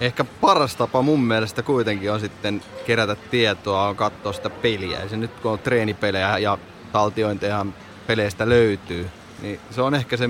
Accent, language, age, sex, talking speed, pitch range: native, Finnish, 20-39, male, 170 wpm, 100-120 Hz